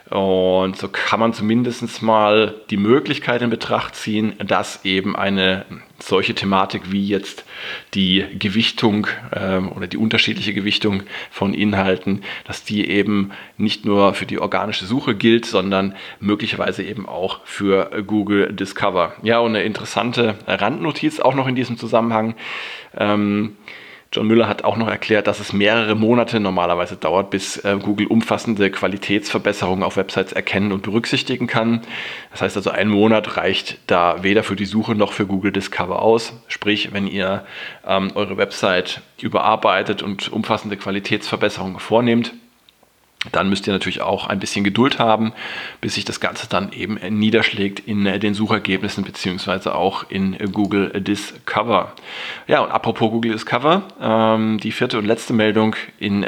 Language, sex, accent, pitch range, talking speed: German, male, German, 100-115 Hz, 145 wpm